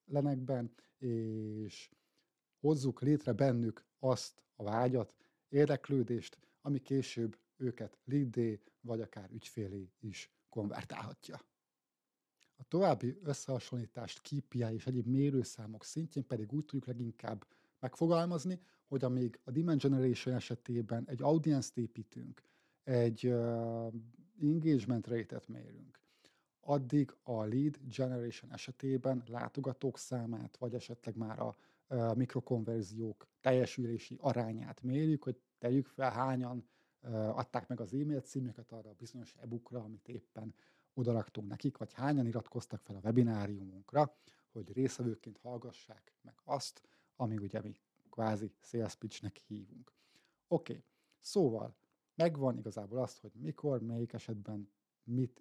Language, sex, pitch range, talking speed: Hungarian, male, 115-135 Hz, 115 wpm